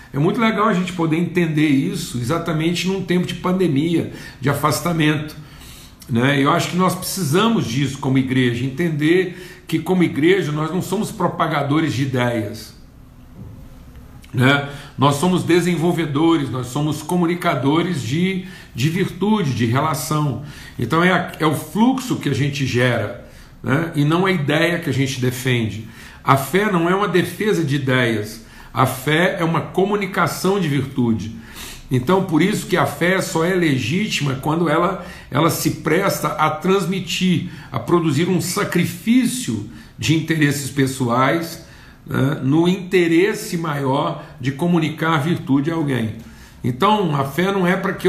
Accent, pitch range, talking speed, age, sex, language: Brazilian, 135-175 Hz, 145 wpm, 50-69, male, Portuguese